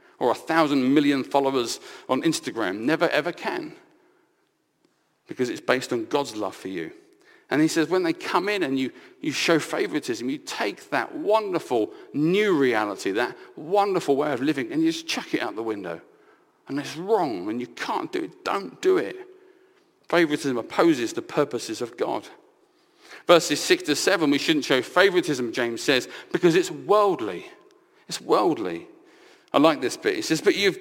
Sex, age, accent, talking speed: male, 50-69, British, 175 wpm